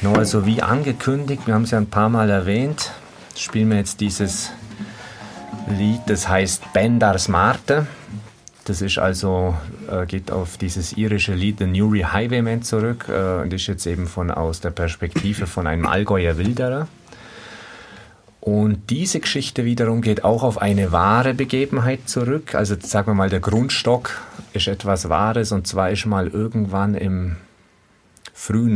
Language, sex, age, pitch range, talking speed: German, male, 40-59, 90-110 Hz, 150 wpm